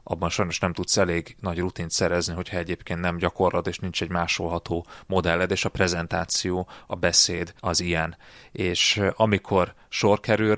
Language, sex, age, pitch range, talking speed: Hungarian, male, 30-49, 90-100 Hz, 160 wpm